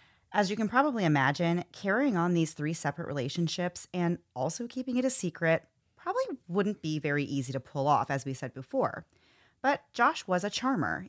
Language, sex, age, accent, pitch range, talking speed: English, female, 30-49, American, 135-190 Hz, 185 wpm